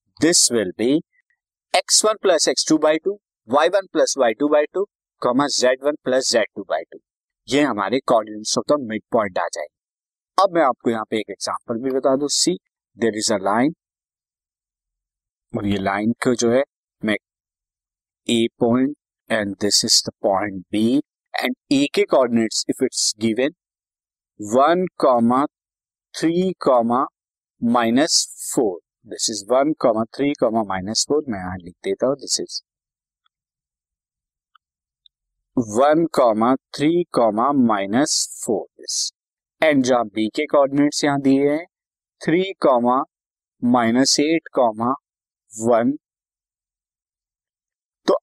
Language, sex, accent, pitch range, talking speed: Hindi, male, native, 115-160 Hz, 95 wpm